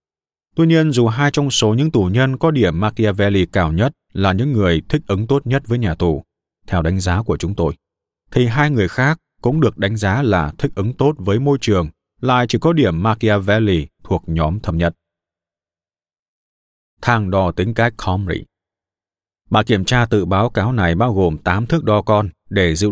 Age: 20-39